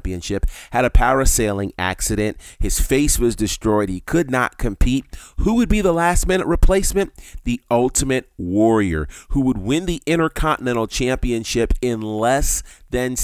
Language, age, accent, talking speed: English, 30-49, American, 140 wpm